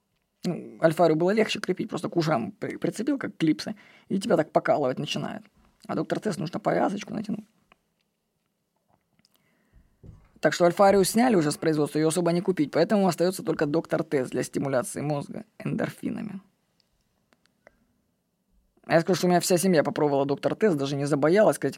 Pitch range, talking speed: 160-200 Hz, 150 wpm